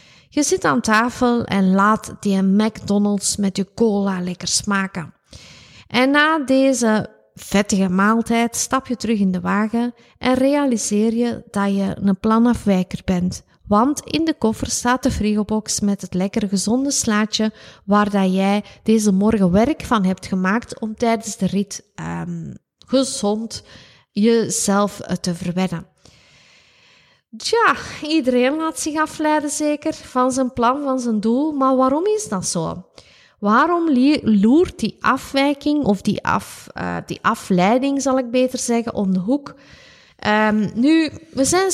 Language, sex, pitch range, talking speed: Dutch, female, 200-265 Hz, 145 wpm